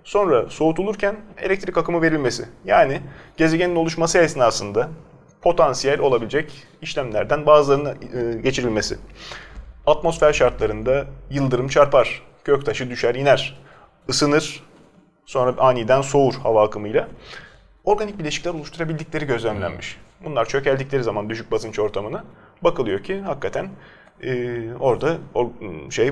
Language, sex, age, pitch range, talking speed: Turkish, male, 30-49, 120-165 Hz, 100 wpm